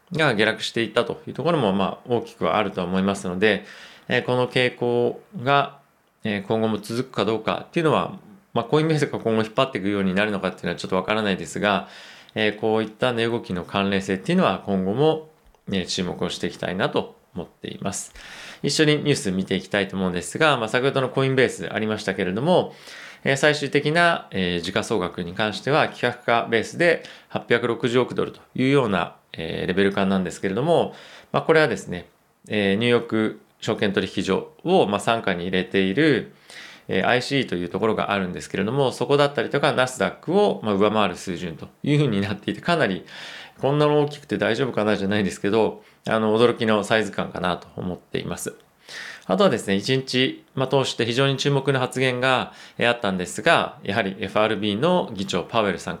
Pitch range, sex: 100-135 Hz, male